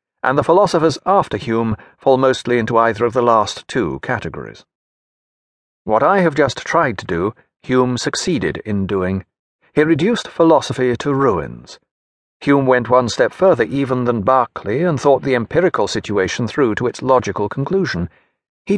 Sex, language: male, English